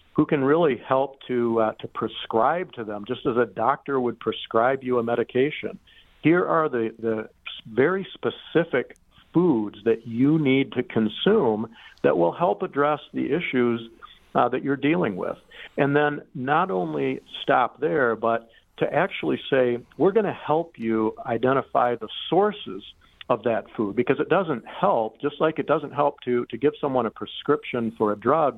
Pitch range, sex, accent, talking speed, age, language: 110-140 Hz, male, American, 170 wpm, 50-69, English